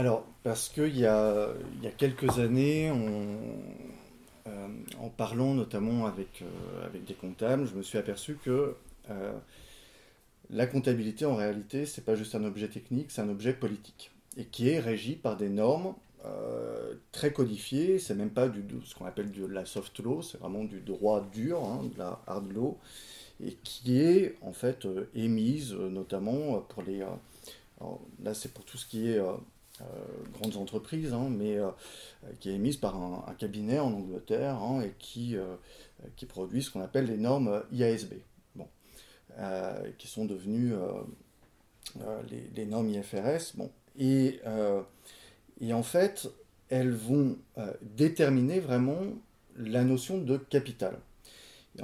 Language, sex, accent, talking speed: French, male, French, 165 wpm